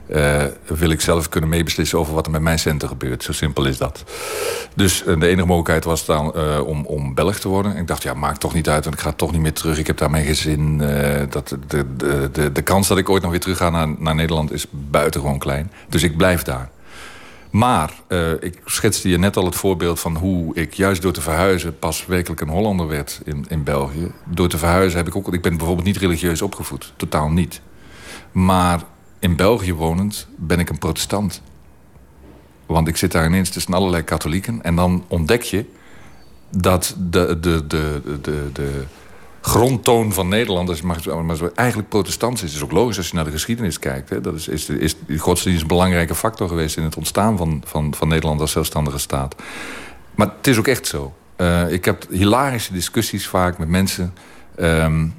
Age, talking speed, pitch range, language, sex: 50-69, 210 wpm, 75-95 Hz, Dutch, male